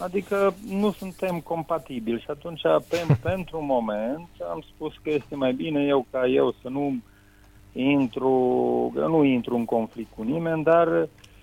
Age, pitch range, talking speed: 40-59, 105-155 Hz, 160 wpm